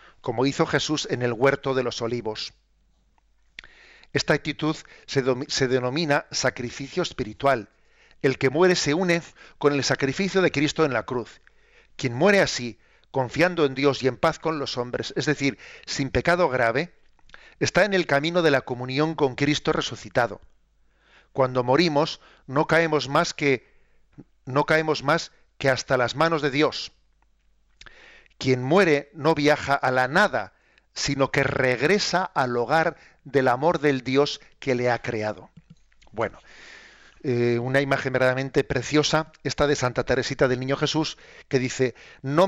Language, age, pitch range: Spanish, 50-69, 125-155 Hz